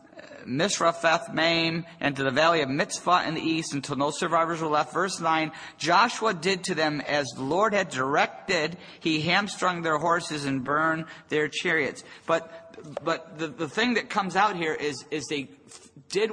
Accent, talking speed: American, 175 wpm